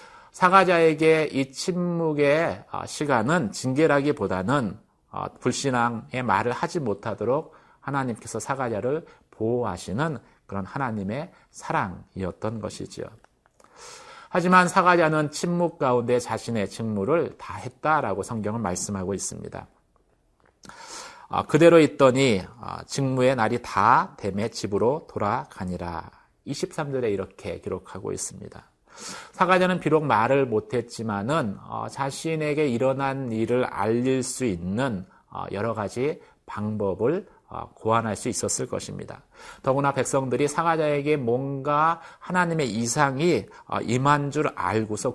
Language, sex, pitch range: Korean, male, 115-160 Hz